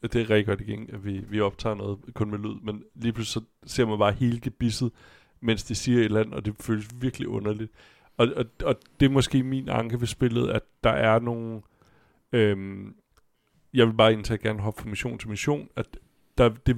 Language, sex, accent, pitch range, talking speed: Danish, male, native, 105-125 Hz, 220 wpm